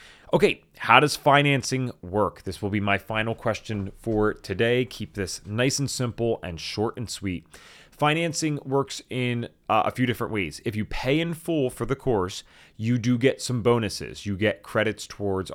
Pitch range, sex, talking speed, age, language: 100-130 Hz, male, 180 wpm, 30-49, English